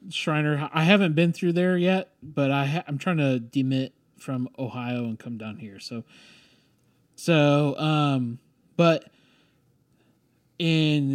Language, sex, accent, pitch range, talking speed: English, male, American, 120-145 Hz, 135 wpm